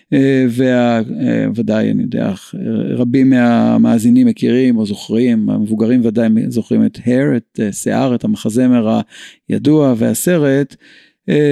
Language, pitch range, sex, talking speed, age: Hebrew, 115-150 Hz, male, 120 wpm, 50-69